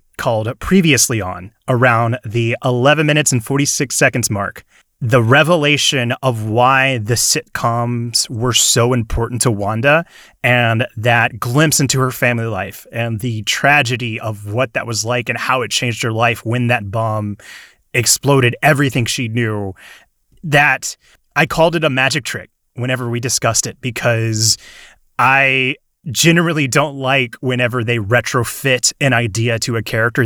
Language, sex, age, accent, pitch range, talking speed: English, male, 30-49, American, 115-145 Hz, 145 wpm